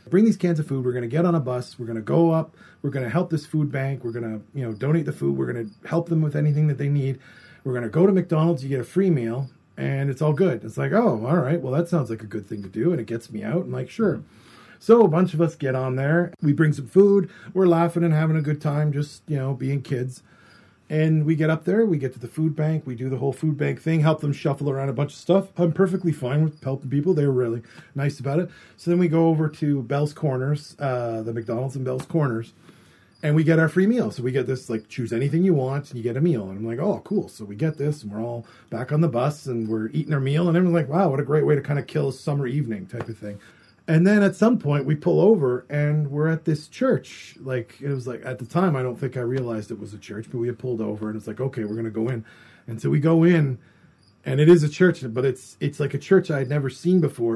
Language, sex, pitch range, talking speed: English, male, 125-160 Hz, 290 wpm